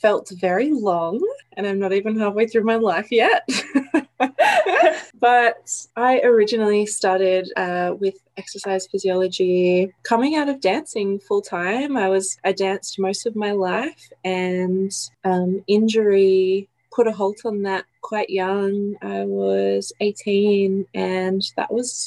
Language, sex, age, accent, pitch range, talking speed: English, female, 20-39, Australian, 180-205 Hz, 135 wpm